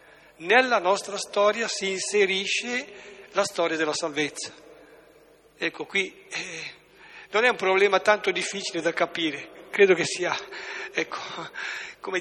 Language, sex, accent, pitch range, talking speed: Italian, male, native, 165-205 Hz, 125 wpm